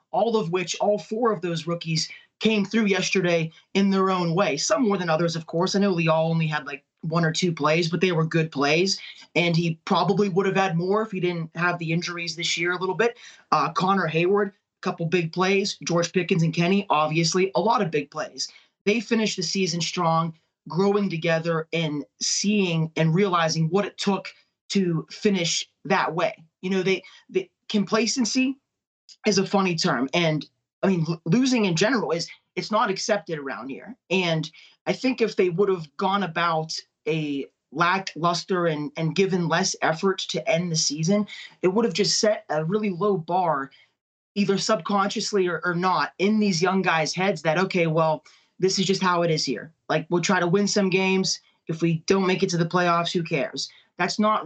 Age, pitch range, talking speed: 30-49, 165-200 Hz, 195 wpm